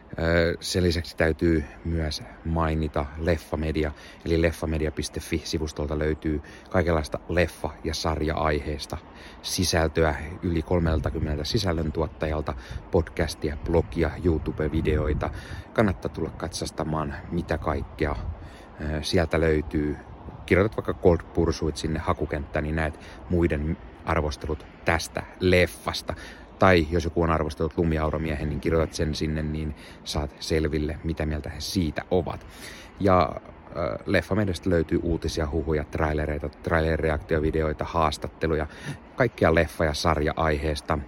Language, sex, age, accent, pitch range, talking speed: Finnish, male, 30-49, native, 75-85 Hz, 100 wpm